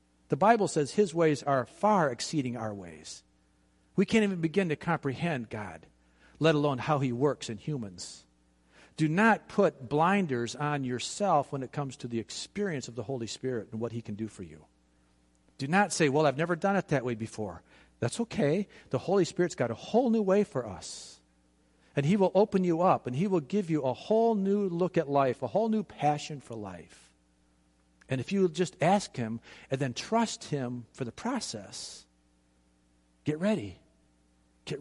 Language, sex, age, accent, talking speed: English, male, 50-69, American, 190 wpm